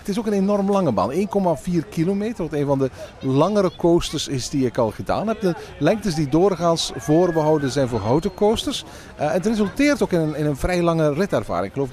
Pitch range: 130-185 Hz